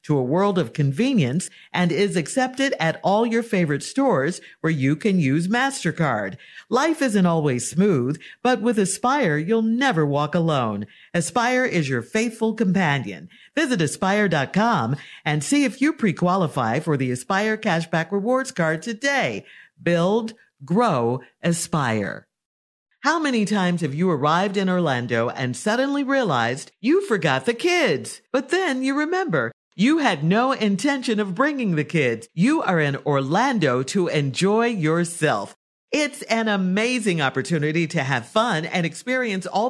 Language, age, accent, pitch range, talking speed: English, 50-69, American, 150-235 Hz, 145 wpm